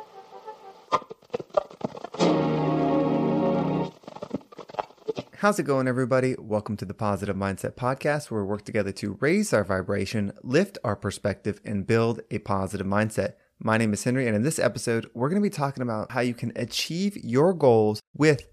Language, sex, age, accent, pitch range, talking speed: English, male, 30-49, American, 105-135 Hz, 150 wpm